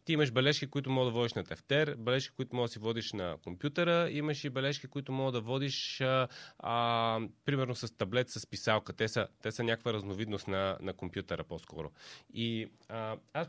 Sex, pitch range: male, 115-145 Hz